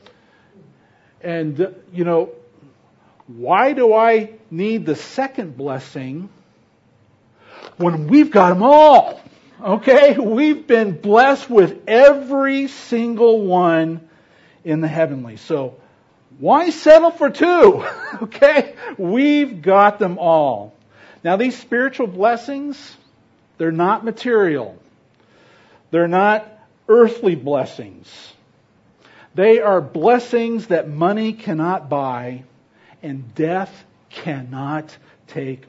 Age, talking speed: 50-69, 100 wpm